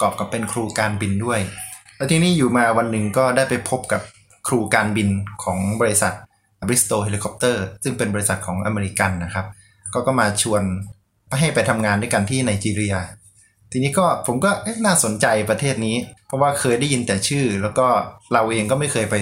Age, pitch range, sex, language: 20-39, 100-120 Hz, male, Thai